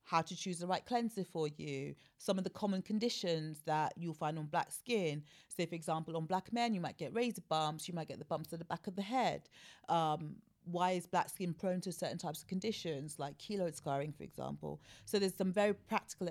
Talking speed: 230 wpm